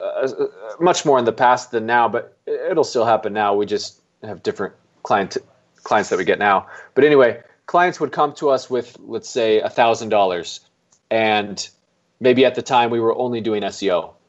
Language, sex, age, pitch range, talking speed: English, male, 20-39, 110-130 Hz, 185 wpm